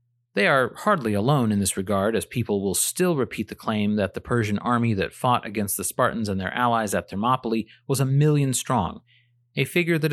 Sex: male